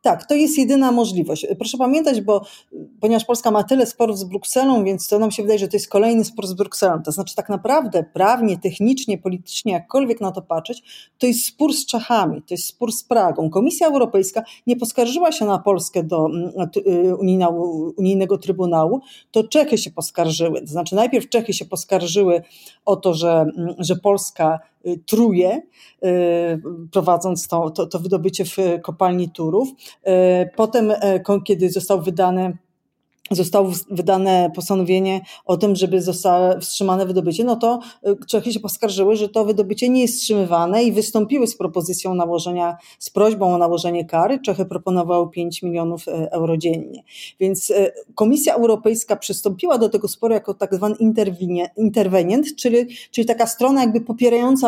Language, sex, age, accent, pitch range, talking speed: Polish, female, 40-59, native, 185-235 Hz, 150 wpm